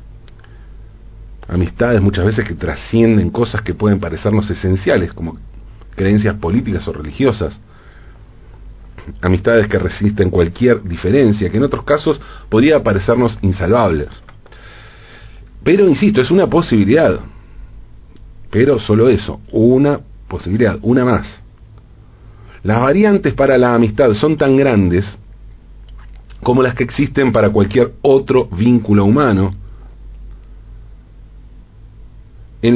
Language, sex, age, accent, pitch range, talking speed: Spanish, male, 40-59, Argentinian, 100-120 Hz, 105 wpm